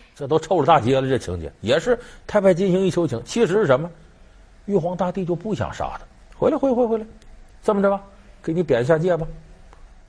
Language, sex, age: Chinese, male, 50-69